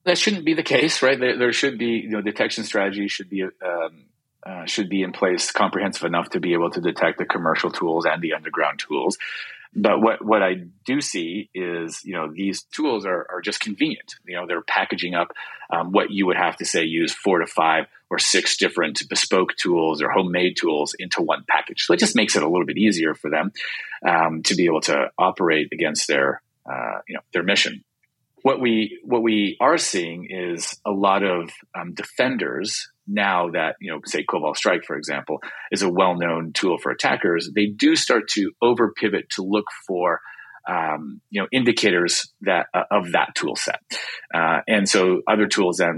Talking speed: 200 wpm